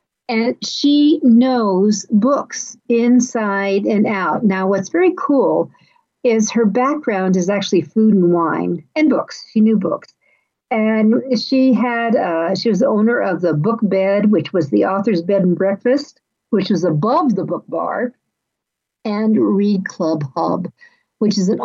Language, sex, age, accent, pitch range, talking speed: English, female, 60-79, American, 185-230 Hz, 155 wpm